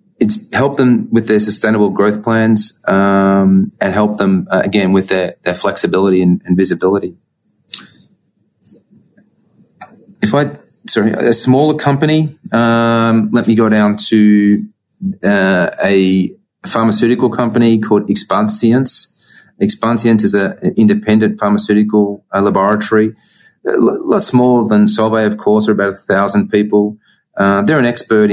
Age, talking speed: 30-49, 130 wpm